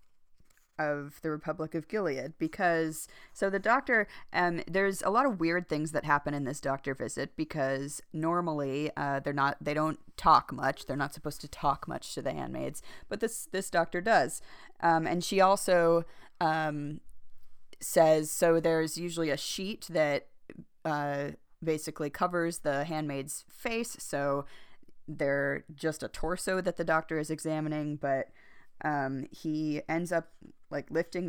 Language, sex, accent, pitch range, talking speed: English, female, American, 150-175 Hz, 155 wpm